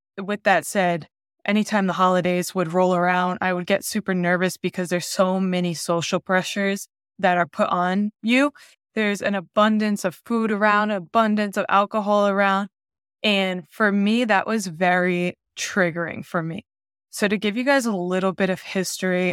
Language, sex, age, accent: English, female, 20-39, American